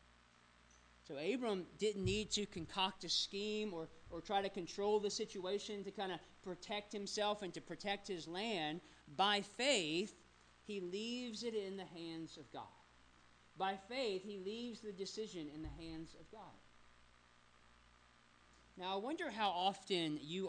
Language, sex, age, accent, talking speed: English, male, 40-59, American, 150 wpm